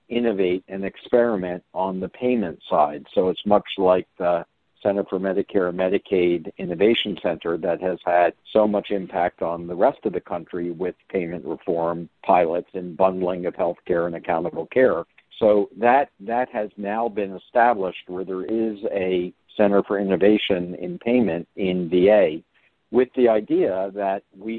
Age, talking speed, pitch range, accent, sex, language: 60-79, 160 wpm, 90-110 Hz, American, male, English